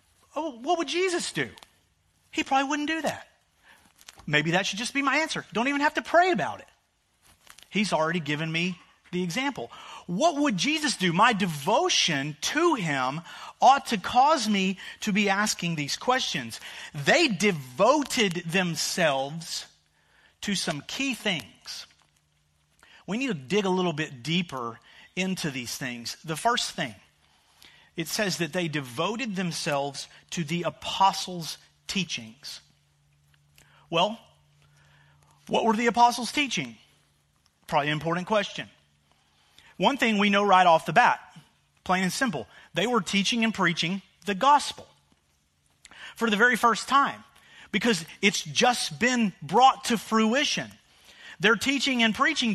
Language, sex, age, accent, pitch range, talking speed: English, male, 40-59, American, 150-240 Hz, 140 wpm